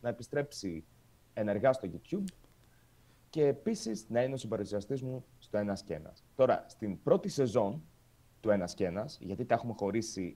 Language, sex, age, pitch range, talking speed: Greek, male, 30-49, 105-140 Hz, 150 wpm